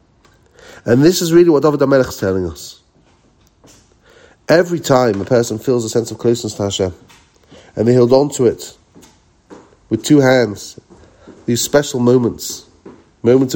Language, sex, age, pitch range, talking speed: English, male, 40-59, 105-130 Hz, 150 wpm